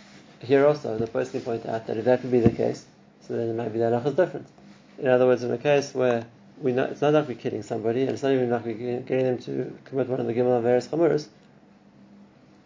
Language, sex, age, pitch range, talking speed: English, male, 30-49, 115-135 Hz, 255 wpm